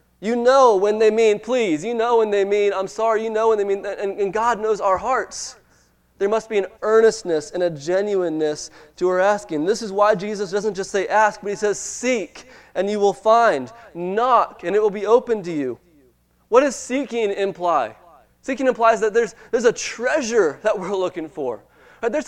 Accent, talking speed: American, 200 wpm